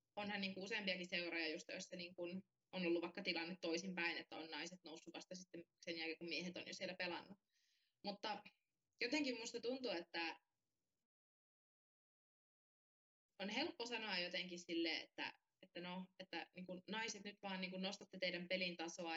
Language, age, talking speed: Finnish, 20-39, 155 wpm